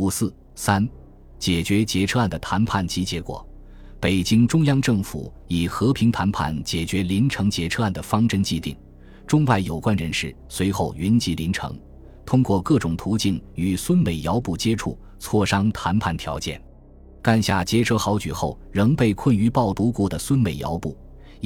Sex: male